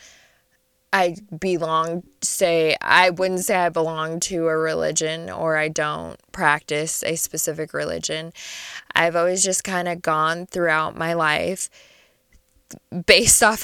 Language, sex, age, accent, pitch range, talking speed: English, female, 20-39, American, 160-195 Hz, 130 wpm